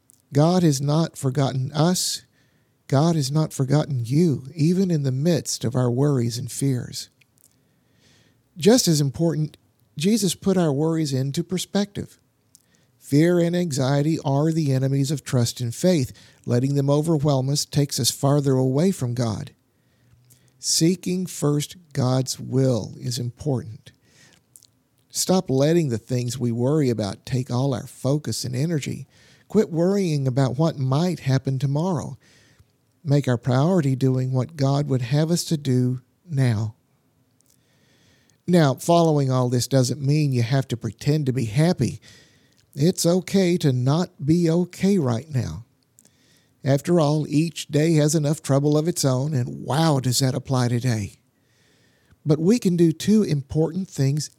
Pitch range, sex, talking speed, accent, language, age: 125-155 Hz, male, 145 wpm, American, English, 50-69